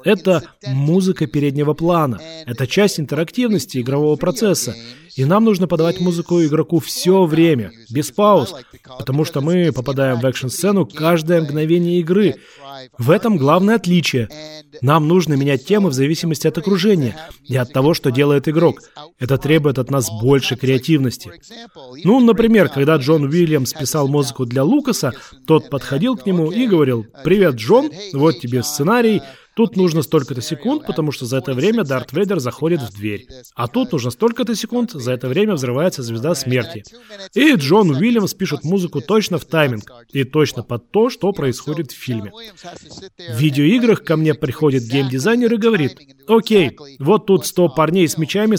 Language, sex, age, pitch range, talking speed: Russian, male, 30-49, 135-190 Hz, 160 wpm